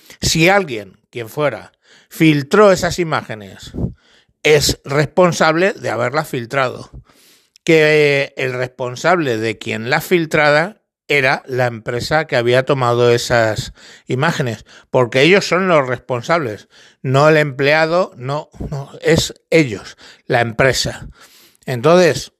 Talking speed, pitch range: 115 wpm, 125-150 Hz